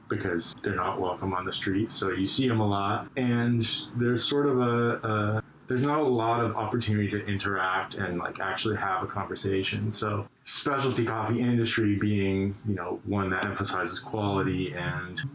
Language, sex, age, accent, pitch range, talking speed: English, male, 20-39, American, 95-115 Hz, 175 wpm